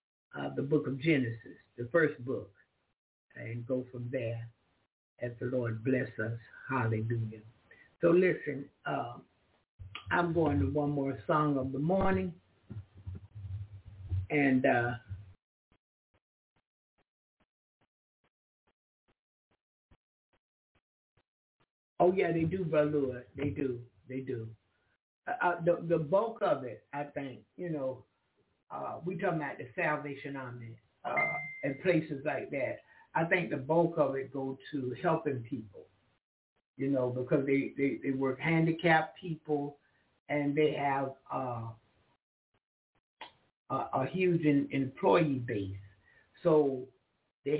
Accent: American